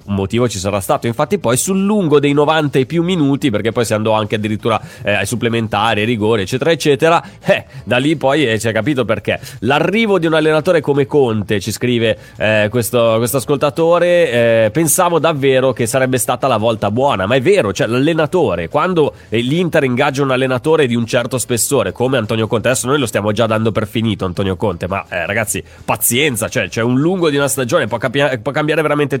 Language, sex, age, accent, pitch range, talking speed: Italian, male, 30-49, native, 110-140 Hz, 200 wpm